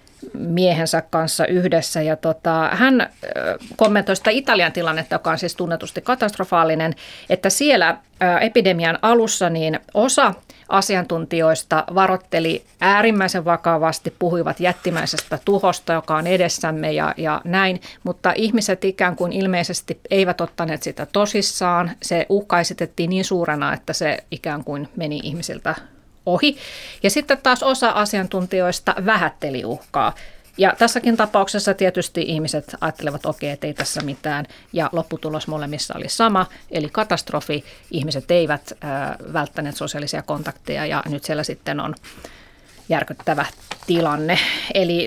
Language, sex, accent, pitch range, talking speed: Finnish, female, native, 160-195 Hz, 120 wpm